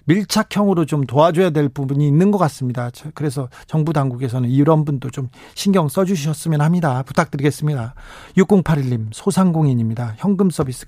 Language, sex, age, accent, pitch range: Korean, male, 40-59, native, 130-165 Hz